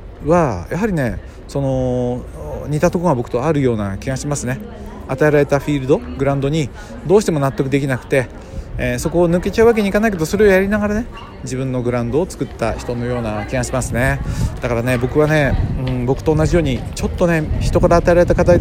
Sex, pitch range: male, 110-155 Hz